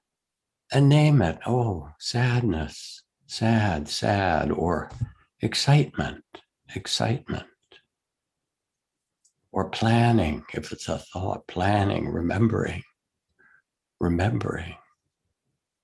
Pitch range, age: 80-105 Hz, 60-79